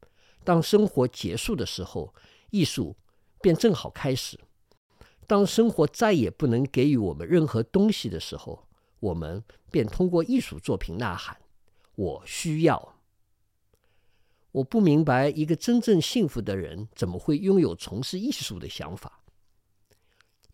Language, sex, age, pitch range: Chinese, male, 50-69, 100-160 Hz